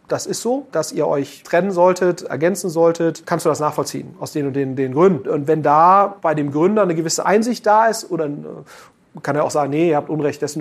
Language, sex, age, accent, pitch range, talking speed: German, male, 40-59, German, 150-185 Hz, 230 wpm